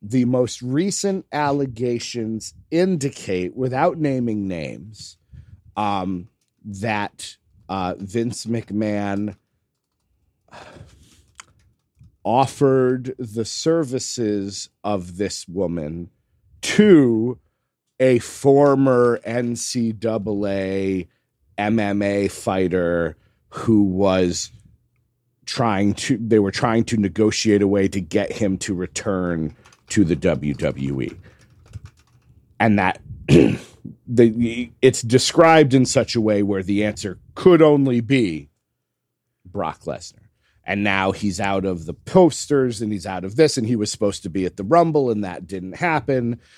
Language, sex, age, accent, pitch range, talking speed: English, male, 40-59, American, 100-125 Hz, 110 wpm